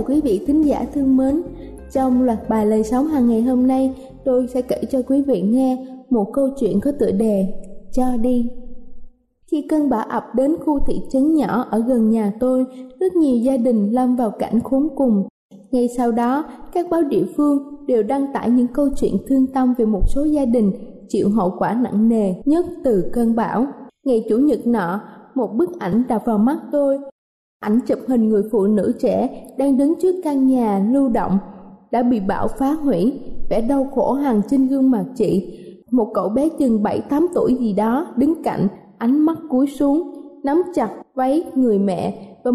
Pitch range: 225-275 Hz